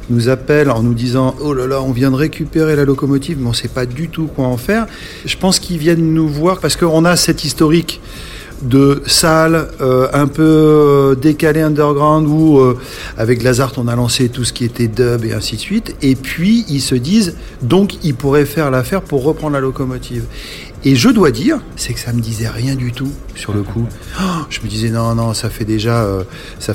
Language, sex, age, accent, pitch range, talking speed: French, male, 40-59, French, 115-150 Hz, 215 wpm